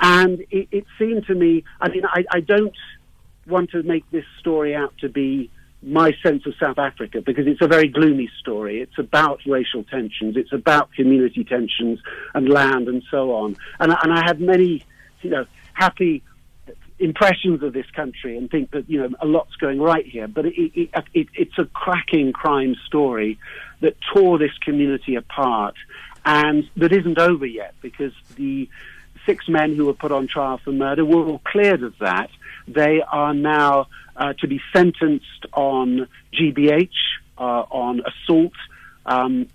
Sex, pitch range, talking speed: male, 135-175 Hz, 165 wpm